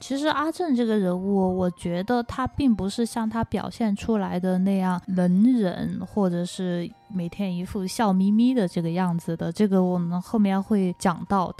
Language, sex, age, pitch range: Chinese, female, 20-39, 185-235 Hz